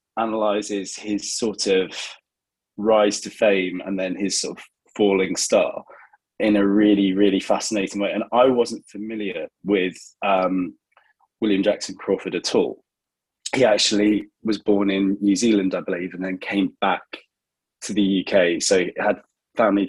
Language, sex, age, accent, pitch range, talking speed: English, male, 20-39, British, 95-105 Hz, 155 wpm